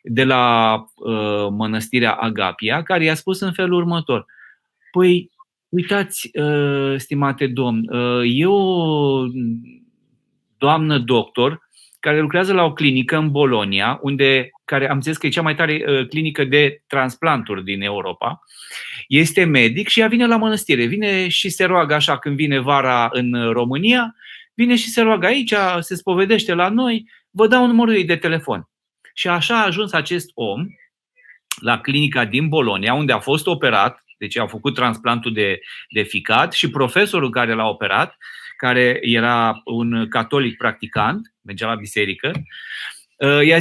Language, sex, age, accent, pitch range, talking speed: Romanian, male, 30-49, native, 120-175 Hz, 150 wpm